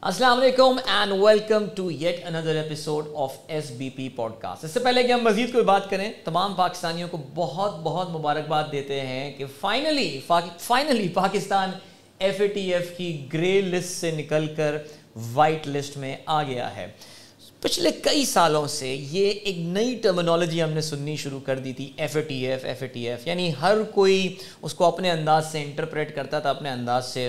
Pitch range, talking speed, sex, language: 140-180 Hz, 195 wpm, male, Urdu